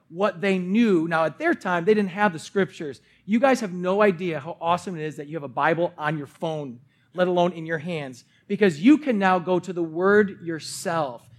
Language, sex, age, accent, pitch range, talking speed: English, male, 40-59, American, 160-205 Hz, 225 wpm